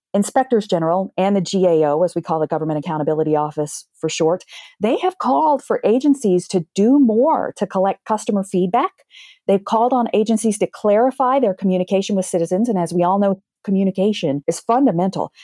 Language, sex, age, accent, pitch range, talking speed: English, female, 40-59, American, 180-250 Hz, 170 wpm